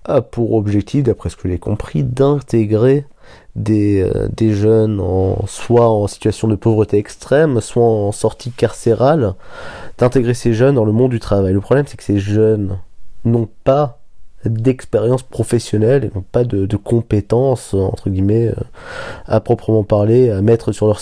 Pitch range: 100-125 Hz